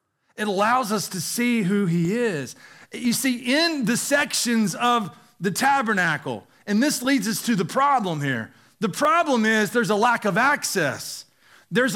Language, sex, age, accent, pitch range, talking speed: English, male, 40-59, American, 195-270 Hz, 165 wpm